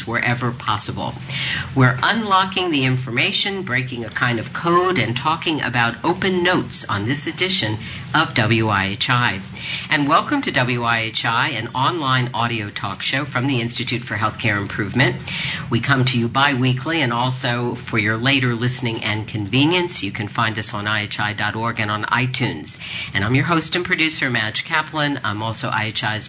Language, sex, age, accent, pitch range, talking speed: English, female, 50-69, American, 115-140 Hz, 155 wpm